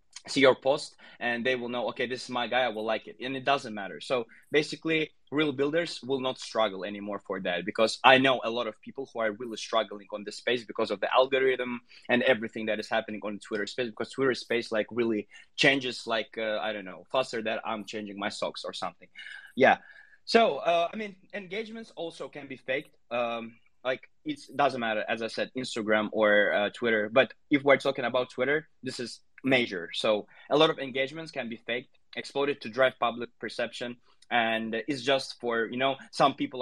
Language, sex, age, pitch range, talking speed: English, male, 20-39, 110-135 Hz, 210 wpm